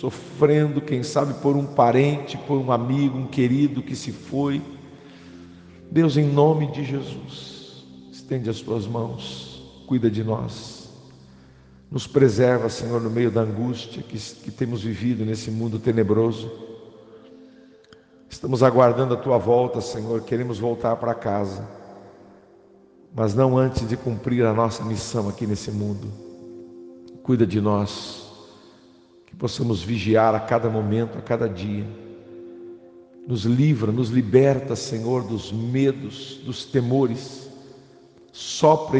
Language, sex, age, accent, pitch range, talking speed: English, male, 50-69, Brazilian, 100-130 Hz, 130 wpm